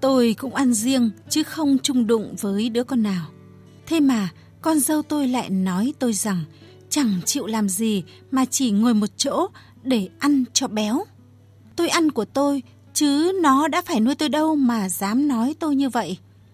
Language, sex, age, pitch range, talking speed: Vietnamese, female, 20-39, 195-265 Hz, 185 wpm